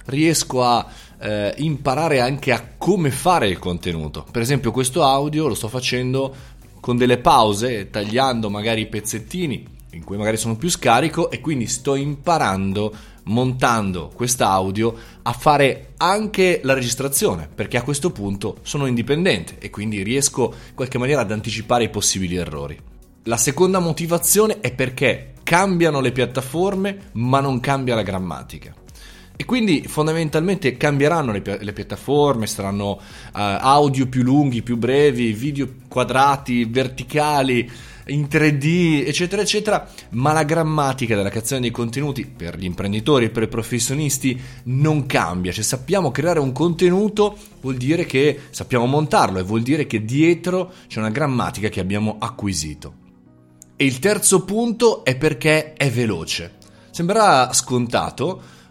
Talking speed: 140 wpm